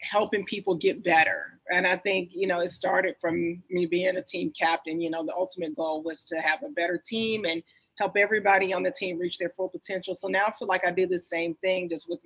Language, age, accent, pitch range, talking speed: English, 30-49, American, 170-200 Hz, 245 wpm